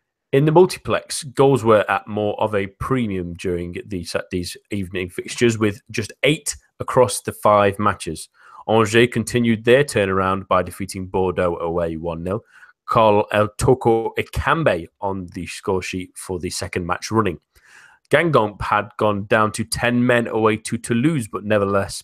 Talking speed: 150 wpm